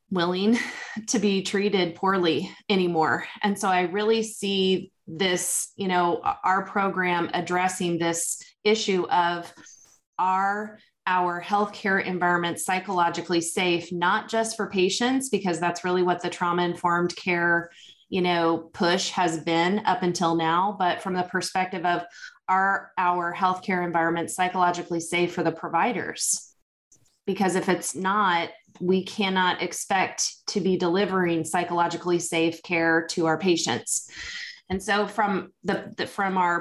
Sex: female